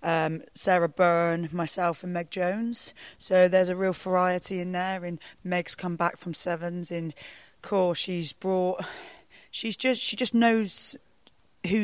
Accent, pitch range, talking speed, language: British, 165-185 Hz, 155 wpm, English